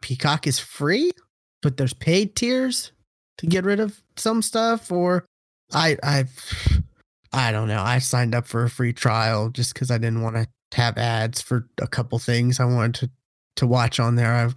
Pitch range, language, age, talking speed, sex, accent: 125-160 Hz, English, 20-39, 195 wpm, male, American